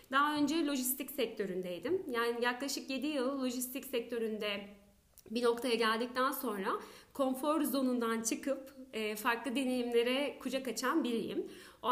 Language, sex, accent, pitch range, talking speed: Turkish, female, native, 240-290 Hz, 115 wpm